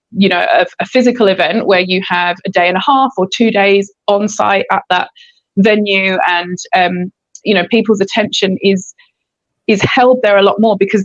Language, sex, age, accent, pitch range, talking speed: English, female, 20-39, British, 190-225 Hz, 195 wpm